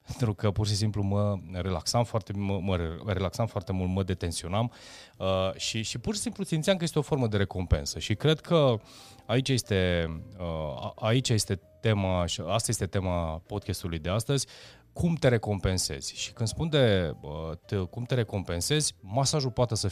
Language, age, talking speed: Romanian, 30-49, 175 wpm